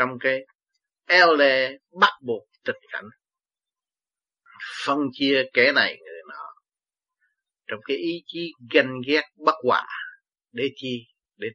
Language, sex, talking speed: Vietnamese, male, 125 wpm